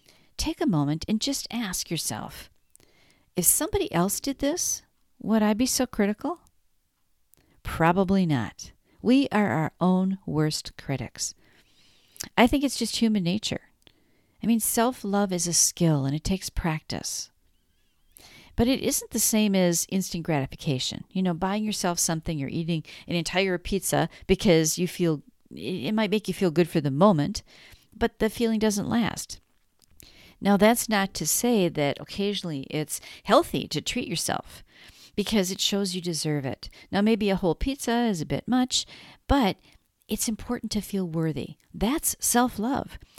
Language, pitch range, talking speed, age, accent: English, 165-235 Hz, 155 wpm, 50-69, American